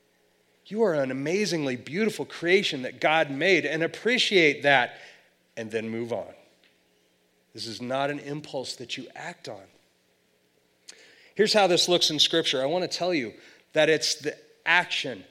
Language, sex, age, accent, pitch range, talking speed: English, male, 30-49, American, 125-170 Hz, 155 wpm